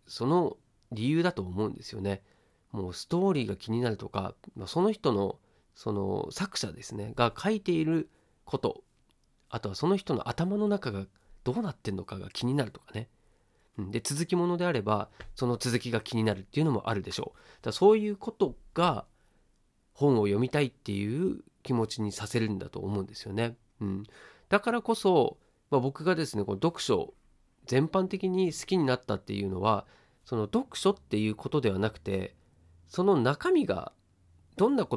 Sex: male